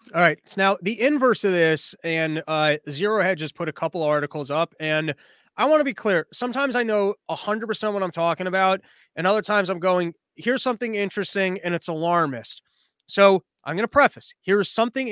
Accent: American